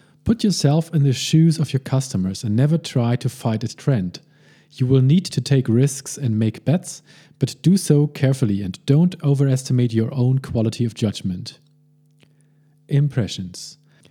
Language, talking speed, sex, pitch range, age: English, 155 wpm, male, 125-155 Hz, 40-59